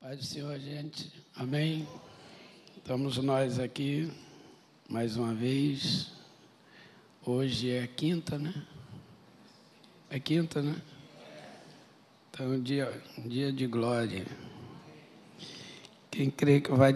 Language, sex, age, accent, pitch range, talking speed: Portuguese, male, 60-79, Brazilian, 130-155 Hz, 105 wpm